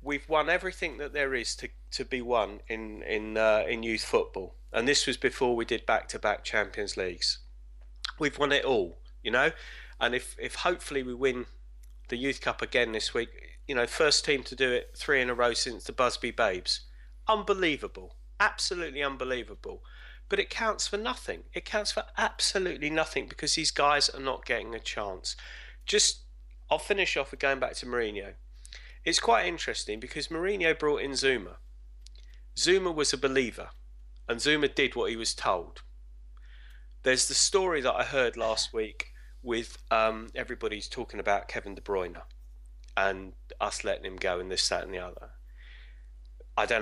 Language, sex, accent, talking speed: English, male, British, 175 wpm